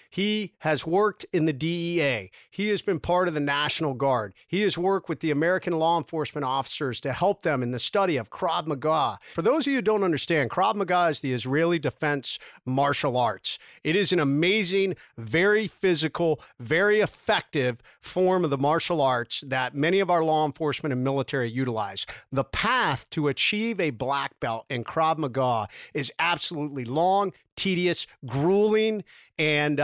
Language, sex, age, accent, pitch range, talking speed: English, male, 50-69, American, 145-190 Hz, 170 wpm